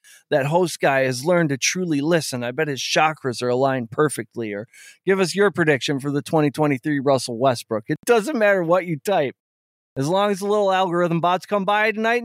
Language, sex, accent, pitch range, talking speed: English, male, American, 135-205 Hz, 210 wpm